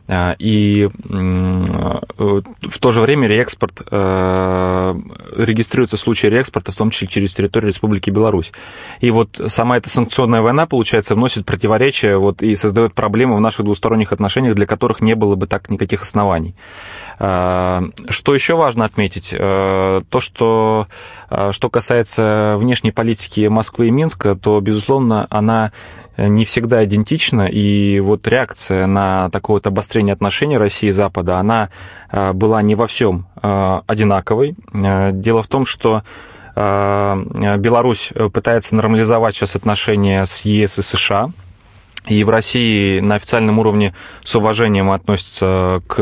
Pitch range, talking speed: 95-115 Hz, 130 wpm